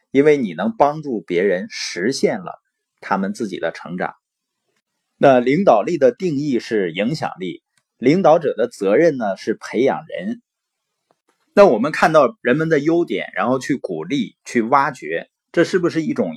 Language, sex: Chinese, male